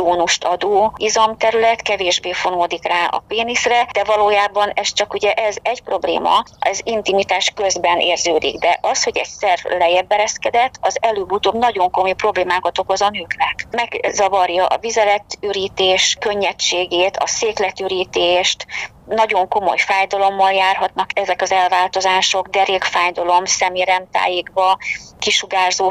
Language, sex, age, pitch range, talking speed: Hungarian, female, 30-49, 180-215 Hz, 115 wpm